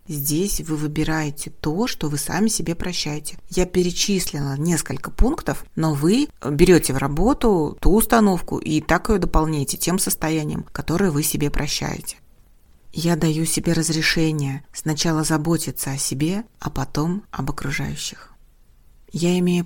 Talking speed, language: 135 wpm, Russian